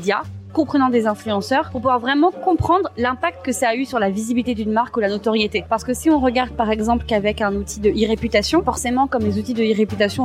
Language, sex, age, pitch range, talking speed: French, female, 20-39, 210-255 Hz, 230 wpm